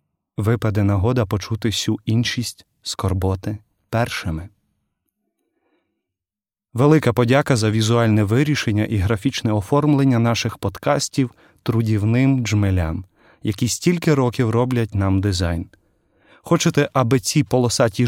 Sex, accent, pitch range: male, native, 105-135 Hz